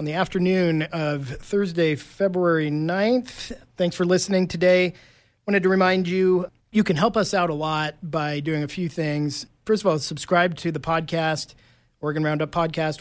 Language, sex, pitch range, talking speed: English, male, 150-185 Hz, 170 wpm